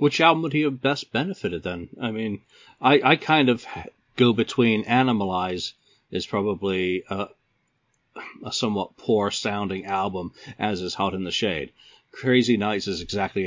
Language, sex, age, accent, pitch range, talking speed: English, male, 40-59, American, 90-125 Hz, 150 wpm